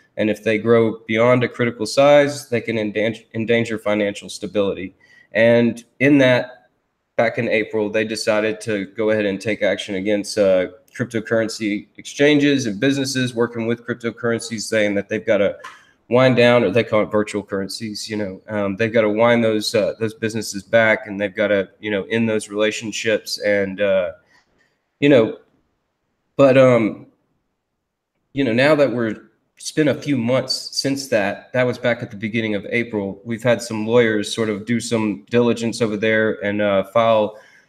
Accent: American